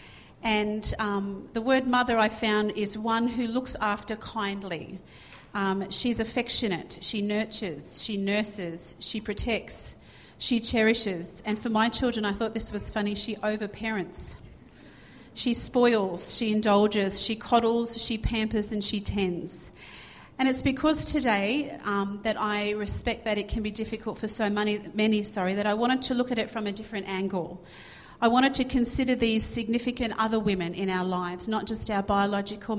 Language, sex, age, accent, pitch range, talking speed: English, female, 40-59, Australian, 200-230 Hz, 170 wpm